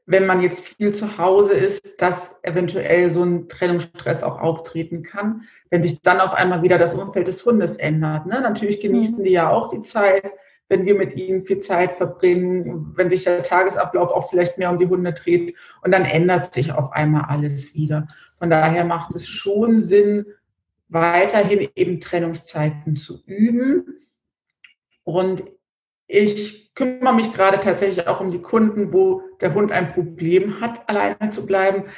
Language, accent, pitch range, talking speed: German, German, 175-200 Hz, 165 wpm